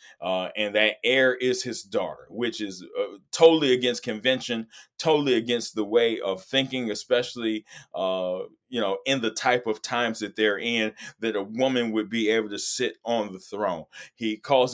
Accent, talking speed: American, 180 wpm